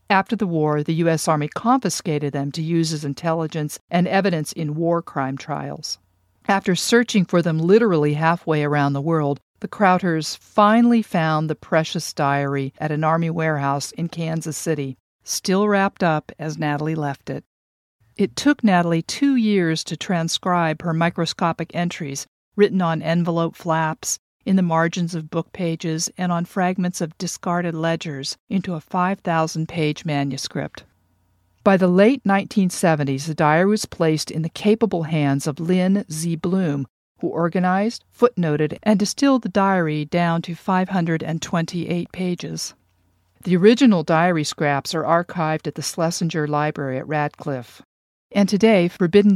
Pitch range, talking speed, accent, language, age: 150-185 Hz, 145 wpm, American, English, 50-69